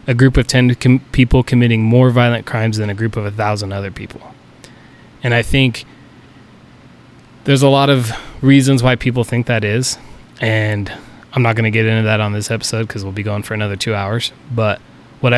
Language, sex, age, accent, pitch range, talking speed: English, male, 20-39, American, 110-130 Hz, 205 wpm